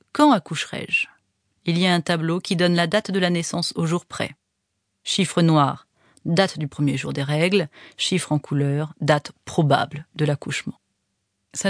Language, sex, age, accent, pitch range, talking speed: French, female, 40-59, French, 135-175 Hz, 175 wpm